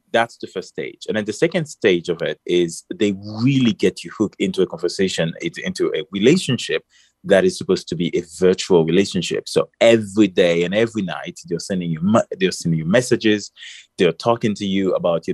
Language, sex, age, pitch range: English, male, 30-49, 85-115 Hz